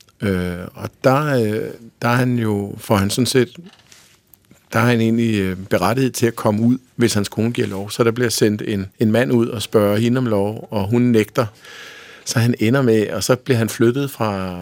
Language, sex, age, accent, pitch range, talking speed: Danish, male, 50-69, native, 100-120 Hz, 205 wpm